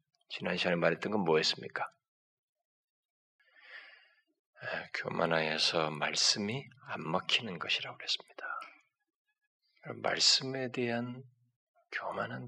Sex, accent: male, native